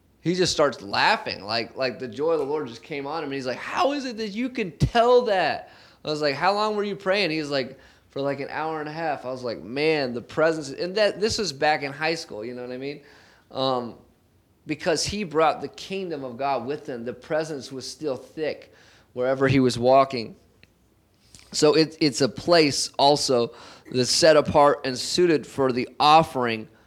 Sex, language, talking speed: male, English, 215 wpm